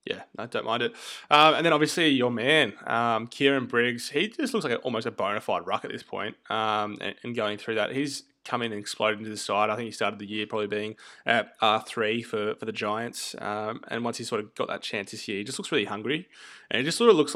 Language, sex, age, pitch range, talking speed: English, male, 20-39, 105-125 Hz, 275 wpm